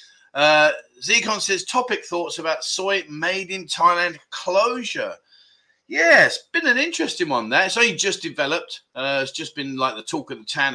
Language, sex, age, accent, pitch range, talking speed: English, male, 30-49, British, 140-220 Hz, 180 wpm